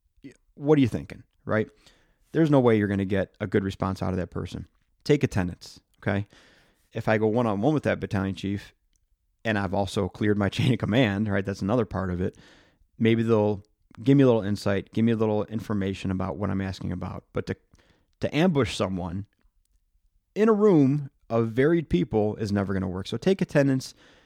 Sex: male